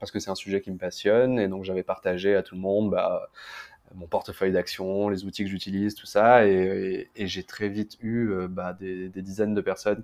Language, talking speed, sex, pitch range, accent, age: French, 240 wpm, male, 95-105 Hz, French, 20-39